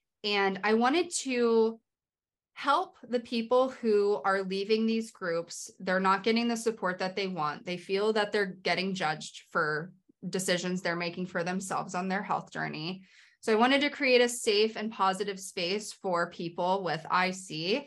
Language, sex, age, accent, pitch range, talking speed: English, female, 20-39, American, 185-235 Hz, 170 wpm